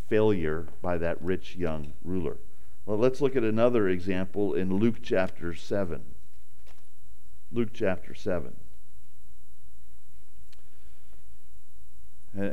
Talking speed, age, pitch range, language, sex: 90 wpm, 50-69, 95-115 Hz, English, male